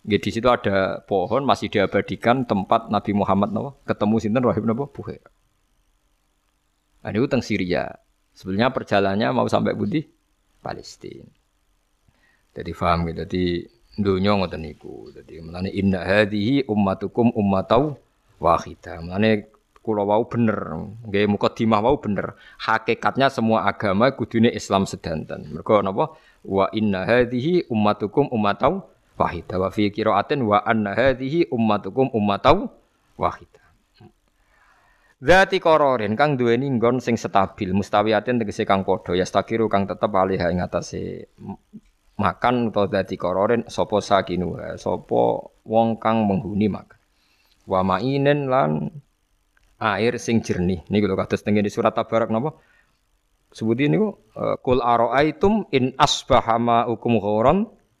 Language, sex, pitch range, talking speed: Indonesian, male, 95-120 Hz, 135 wpm